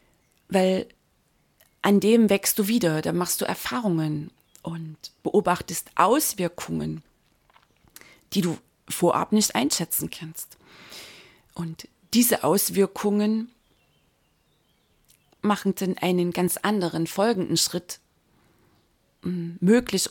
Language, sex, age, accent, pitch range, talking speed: German, female, 30-49, German, 170-210 Hz, 90 wpm